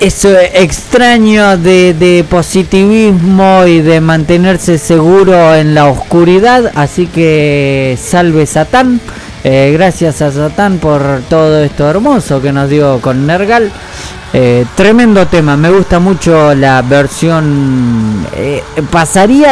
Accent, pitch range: Argentinian, 135-195 Hz